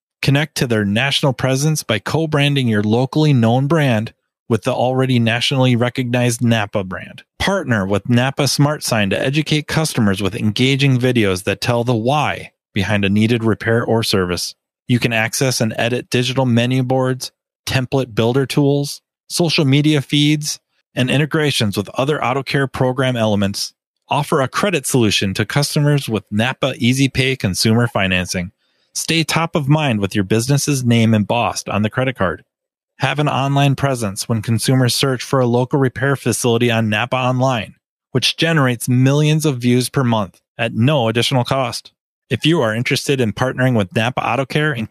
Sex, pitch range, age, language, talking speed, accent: male, 110-140 Hz, 30-49, English, 160 wpm, American